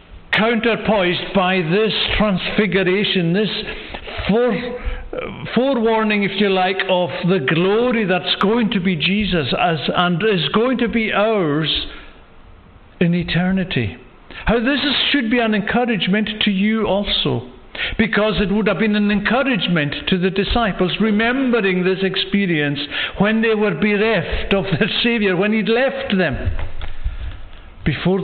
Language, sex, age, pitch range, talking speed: English, male, 60-79, 165-225 Hz, 130 wpm